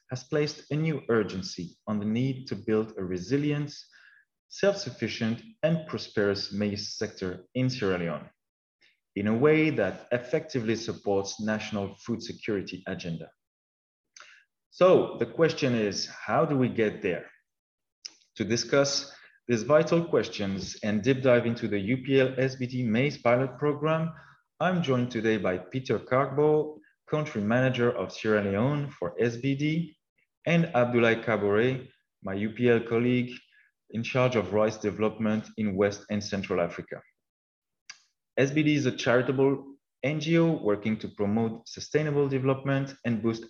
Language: English